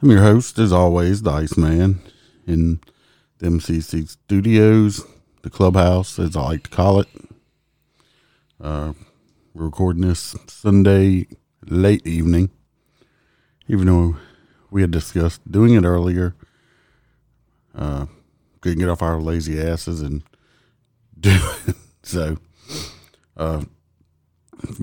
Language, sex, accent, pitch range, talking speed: English, male, American, 80-95 Hz, 110 wpm